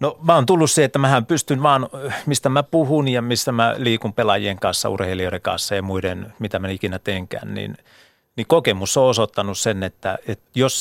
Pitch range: 100-125 Hz